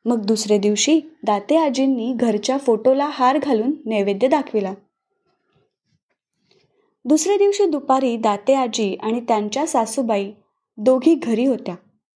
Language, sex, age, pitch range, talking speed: Marathi, female, 20-39, 225-310 Hz, 110 wpm